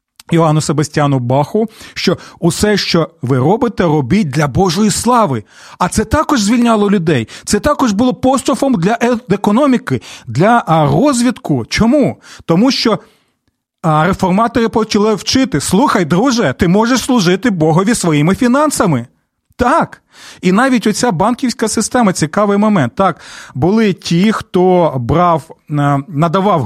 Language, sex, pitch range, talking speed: Ukrainian, male, 160-220 Hz, 120 wpm